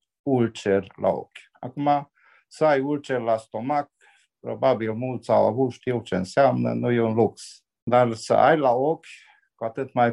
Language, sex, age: Romanian, male, 50-69